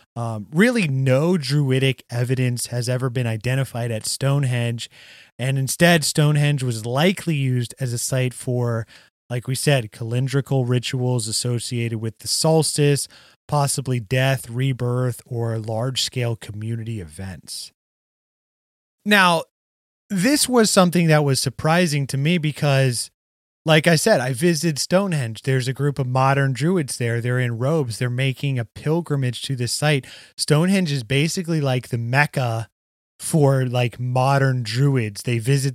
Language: English